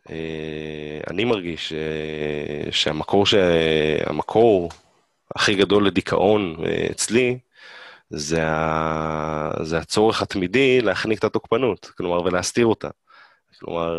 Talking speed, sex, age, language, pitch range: 105 wpm, male, 20-39, Hebrew, 85-120 Hz